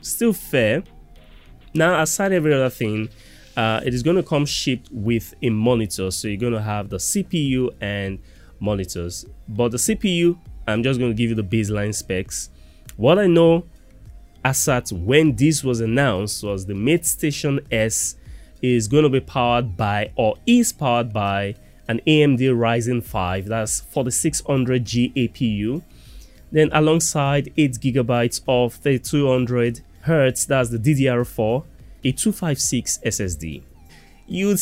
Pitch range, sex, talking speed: 105-140 Hz, male, 145 wpm